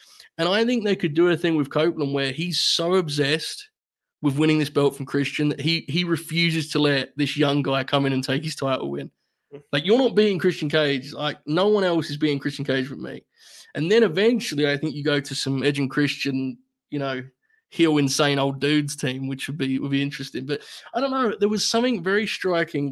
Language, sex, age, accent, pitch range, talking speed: English, male, 20-39, Australian, 140-180 Hz, 225 wpm